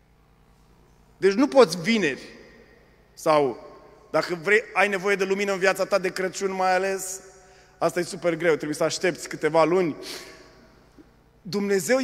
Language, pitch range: Romanian, 170-210 Hz